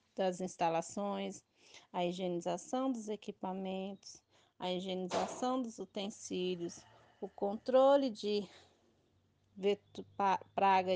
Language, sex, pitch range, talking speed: Portuguese, female, 175-210 Hz, 80 wpm